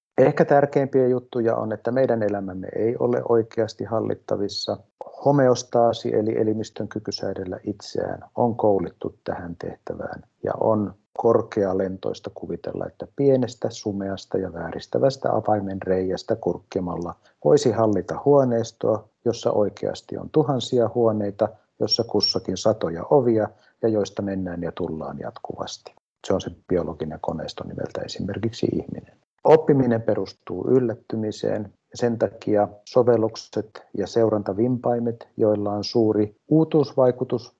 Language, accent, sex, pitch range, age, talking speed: Finnish, native, male, 95-120 Hz, 50-69, 115 wpm